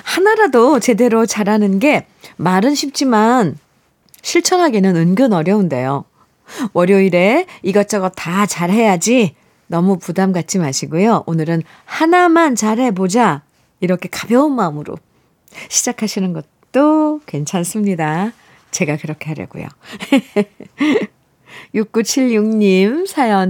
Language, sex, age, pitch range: Korean, female, 40-59, 180-245 Hz